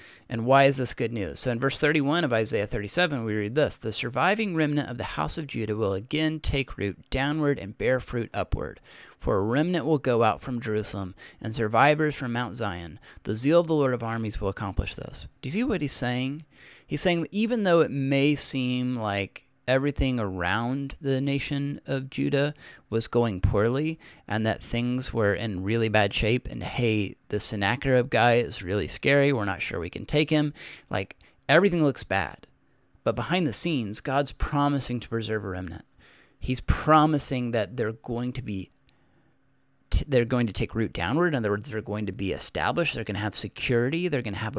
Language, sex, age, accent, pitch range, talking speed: English, male, 30-49, American, 105-140 Hz, 200 wpm